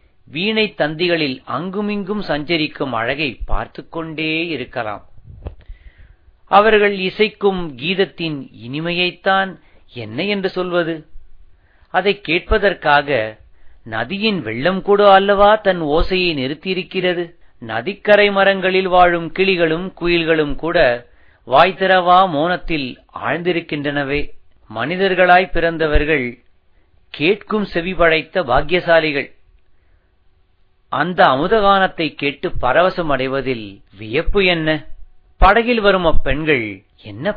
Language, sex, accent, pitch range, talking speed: Tamil, male, native, 120-185 Hz, 80 wpm